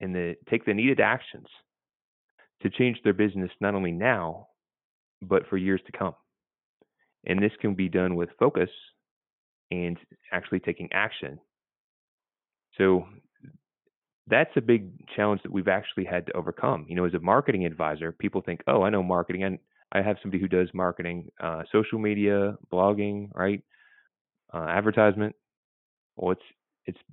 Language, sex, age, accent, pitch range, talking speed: English, male, 20-39, American, 90-105 Hz, 155 wpm